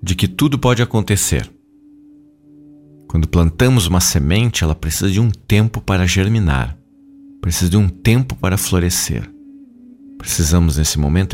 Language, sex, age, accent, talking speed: Portuguese, male, 50-69, Brazilian, 130 wpm